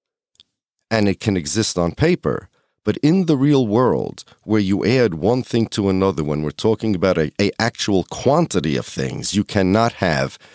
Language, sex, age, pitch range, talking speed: English, male, 40-59, 85-115 Hz, 175 wpm